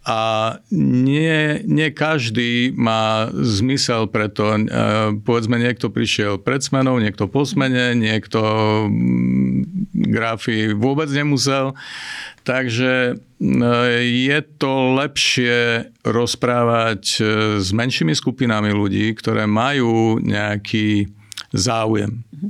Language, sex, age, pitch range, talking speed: Slovak, male, 50-69, 105-130 Hz, 85 wpm